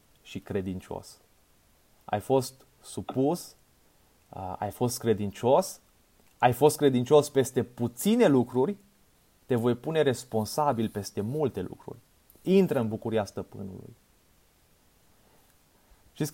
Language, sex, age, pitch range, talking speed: Romanian, male, 30-49, 100-140 Hz, 95 wpm